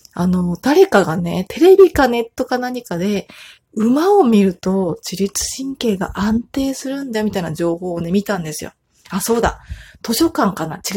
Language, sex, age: Japanese, female, 30-49